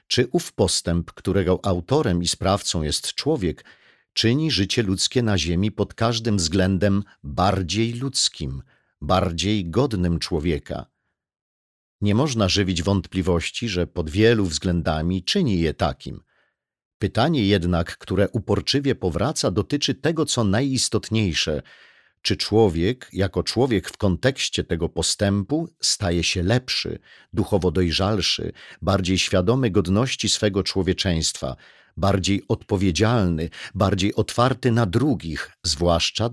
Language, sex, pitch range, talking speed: Polish, male, 90-125 Hz, 110 wpm